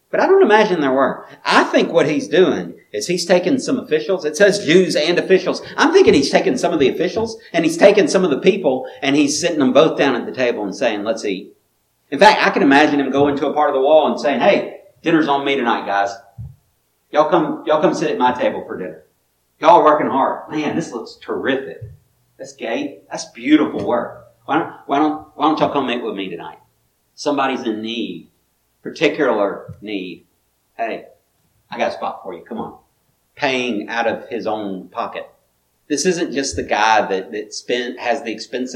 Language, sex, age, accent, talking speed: English, male, 40-59, American, 210 wpm